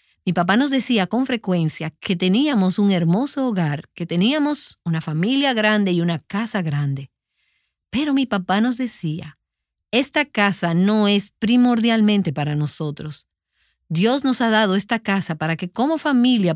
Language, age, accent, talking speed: Spanish, 40-59, American, 150 wpm